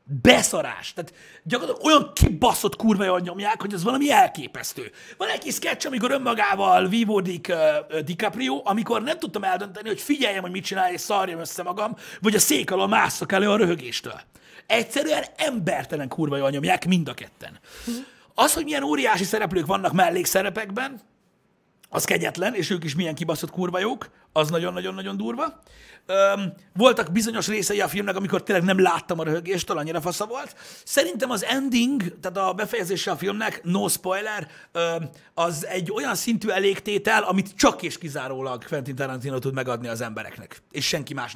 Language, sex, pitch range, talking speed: Hungarian, male, 160-220 Hz, 160 wpm